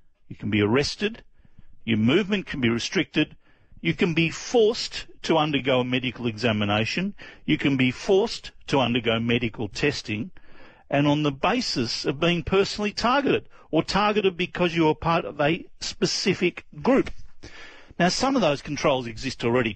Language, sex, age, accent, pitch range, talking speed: English, male, 50-69, Australian, 130-190 Hz, 155 wpm